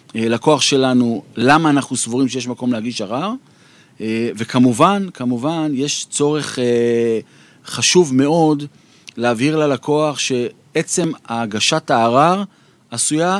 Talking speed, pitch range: 95 wpm, 120-155 Hz